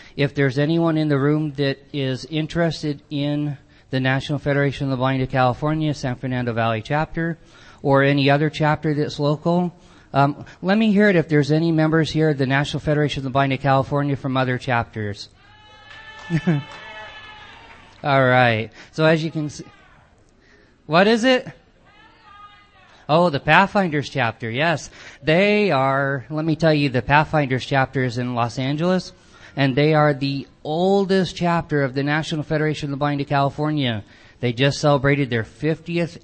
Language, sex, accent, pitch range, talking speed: English, male, American, 130-155 Hz, 160 wpm